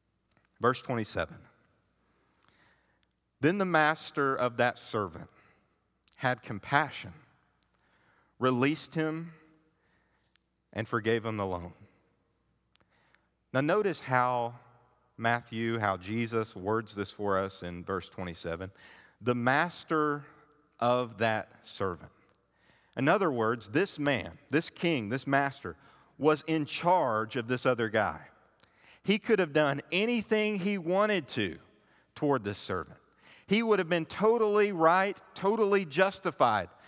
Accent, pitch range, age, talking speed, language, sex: American, 105-155 Hz, 40-59, 115 wpm, English, male